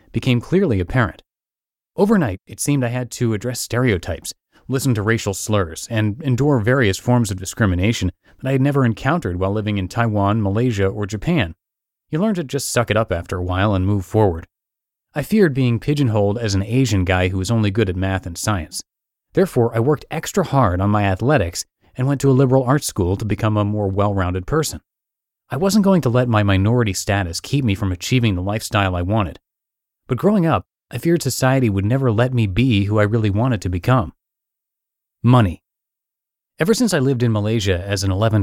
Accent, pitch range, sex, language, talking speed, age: American, 100-130 Hz, male, English, 195 wpm, 30-49